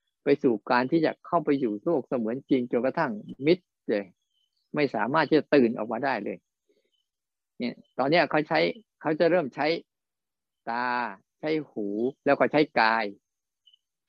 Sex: male